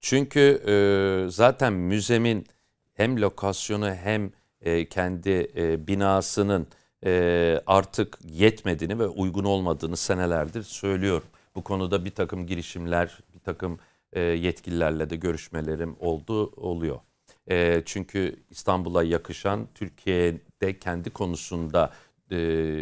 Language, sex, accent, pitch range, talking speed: Turkish, male, native, 85-105 Hz, 105 wpm